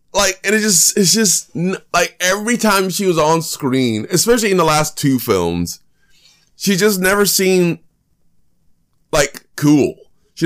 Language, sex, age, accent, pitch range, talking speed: English, male, 20-39, American, 140-200 Hz, 150 wpm